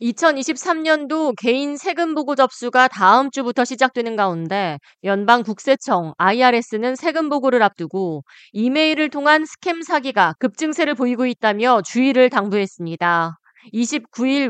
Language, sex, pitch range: Korean, female, 205-290 Hz